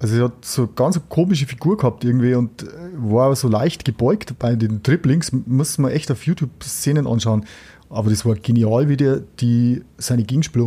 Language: German